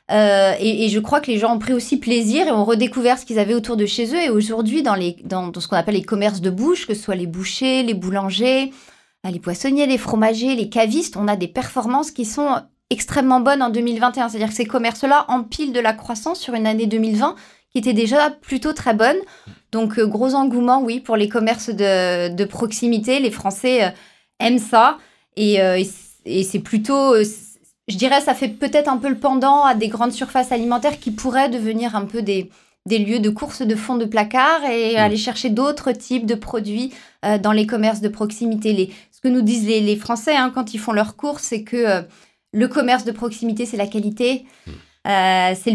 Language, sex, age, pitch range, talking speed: French, female, 20-39, 215-260 Hz, 220 wpm